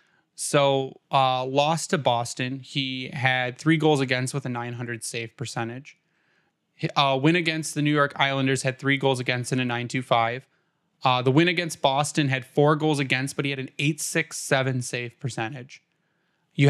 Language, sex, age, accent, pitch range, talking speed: English, male, 10-29, American, 135-165 Hz, 180 wpm